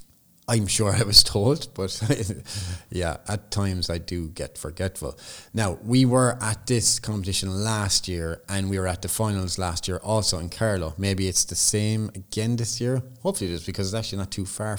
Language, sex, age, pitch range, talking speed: English, male, 30-49, 90-110 Hz, 195 wpm